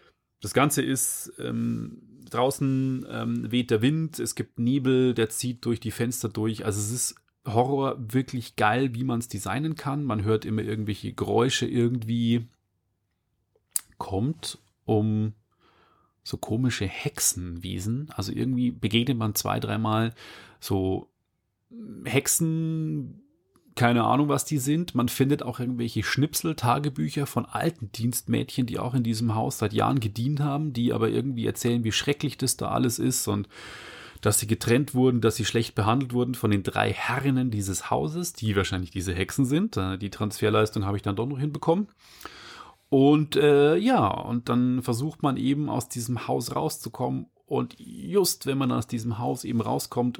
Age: 30-49